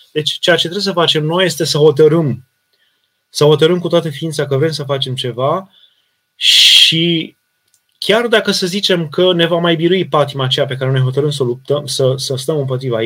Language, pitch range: Romanian, 140-170 Hz